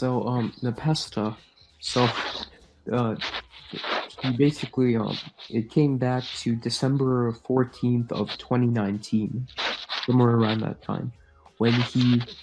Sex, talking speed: male, 105 wpm